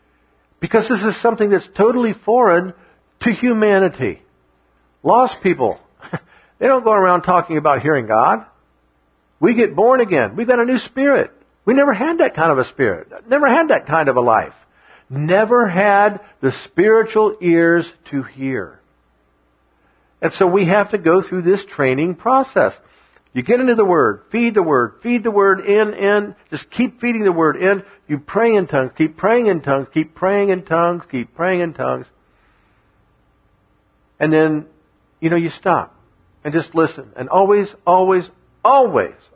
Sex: male